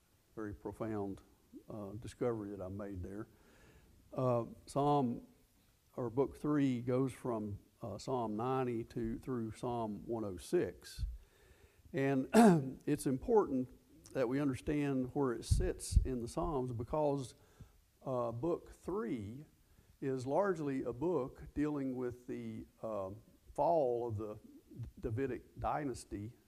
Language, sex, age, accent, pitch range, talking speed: English, male, 50-69, American, 105-130 Hz, 115 wpm